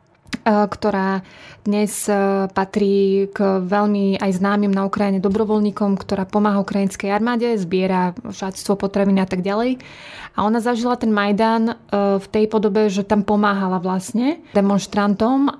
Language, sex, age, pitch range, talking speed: Slovak, female, 20-39, 195-215 Hz, 125 wpm